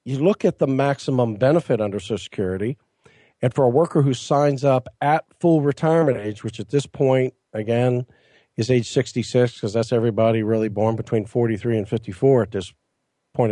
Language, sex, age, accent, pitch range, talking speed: English, male, 50-69, American, 115-140 Hz, 180 wpm